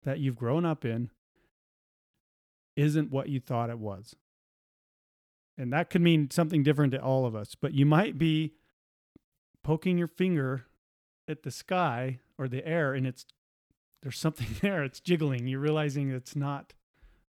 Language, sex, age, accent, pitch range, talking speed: English, male, 40-59, American, 125-155 Hz, 155 wpm